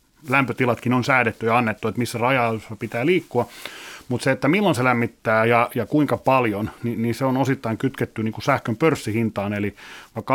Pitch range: 115-125 Hz